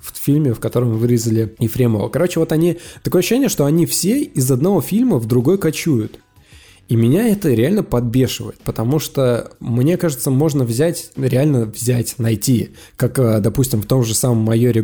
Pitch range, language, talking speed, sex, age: 120-150 Hz, Russian, 165 wpm, male, 20-39